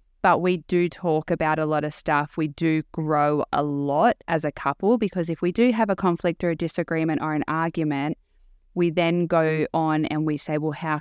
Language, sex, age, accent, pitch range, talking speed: English, female, 20-39, Australian, 155-185 Hz, 215 wpm